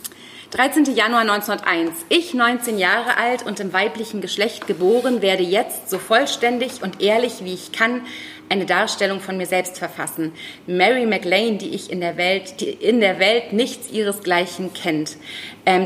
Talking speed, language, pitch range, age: 160 wpm, German, 190-235 Hz, 30-49